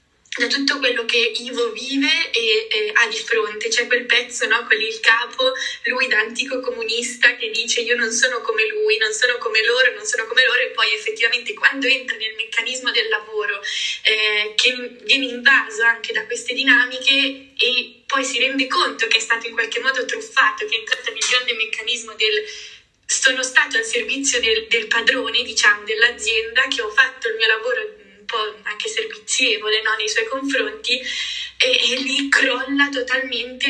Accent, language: native, Italian